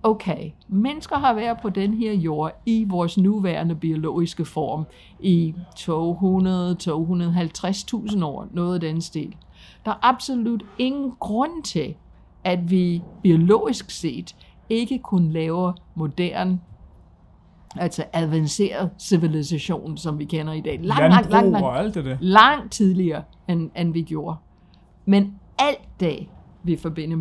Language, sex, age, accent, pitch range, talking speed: Danish, female, 60-79, native, 160-200 Hz, 125 wpm